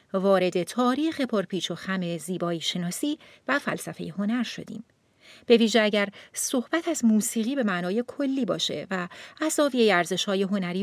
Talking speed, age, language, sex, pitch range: 145 wpm, 40-59, Persian, female, 185-255 Hz